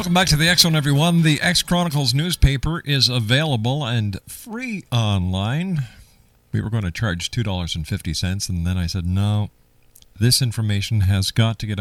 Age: 50-69